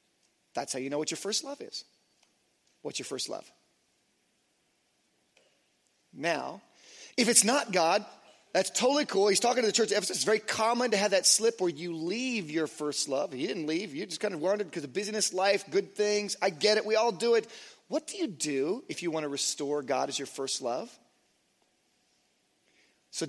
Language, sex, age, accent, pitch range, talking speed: English, male, 30-49, American, 160-215 Hz, 195 wpm